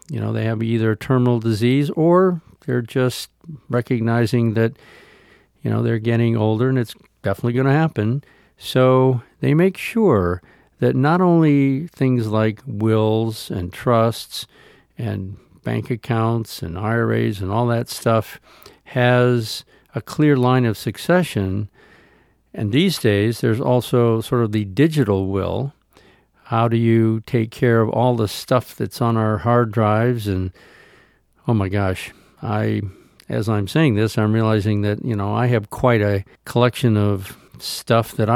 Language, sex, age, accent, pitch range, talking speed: English, male, 50-69, American, 105-125 Hz, 150 wpm